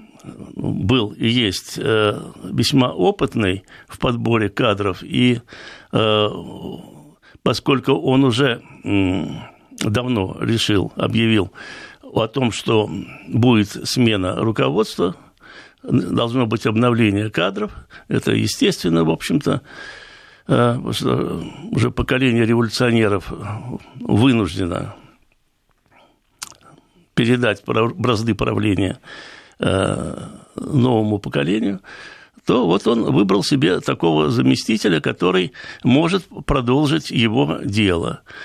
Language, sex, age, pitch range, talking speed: Russian, male, 60-79, 105-140 Hz, 80 wpm